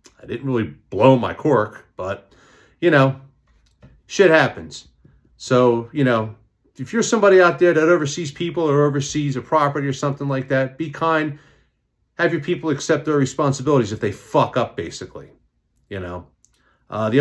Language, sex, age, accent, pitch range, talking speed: English, male, 40-59, American, 110-160 Hz, 165 wpm